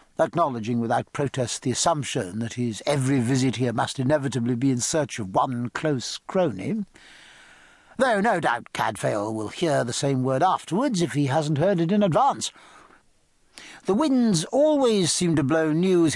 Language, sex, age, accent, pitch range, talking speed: English, male, 60-79, British, 135-180 Hz, 160 wpm